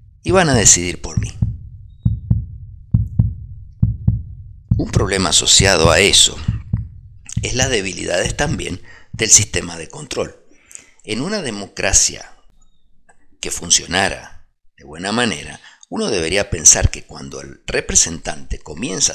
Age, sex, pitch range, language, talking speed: 50-69, male, 85-115 Hz, Spanish, 110 wpm